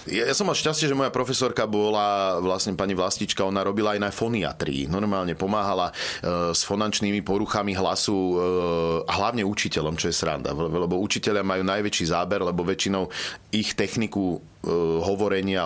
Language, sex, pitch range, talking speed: Slovak, male, 90-110 Hz, 145 wpm